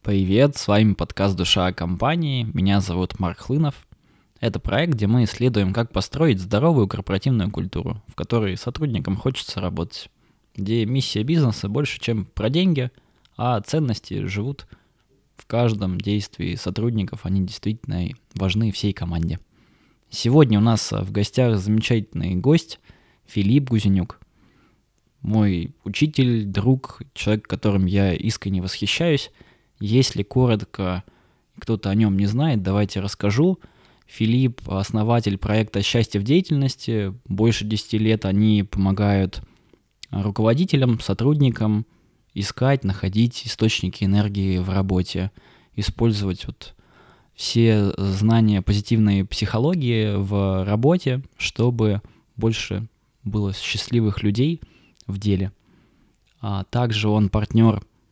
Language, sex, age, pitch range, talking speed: Russian, male, 20-39, 100-120 Hz, 115 wpm